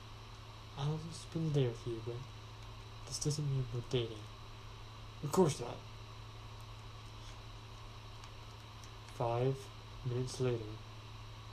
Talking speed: 95 wpm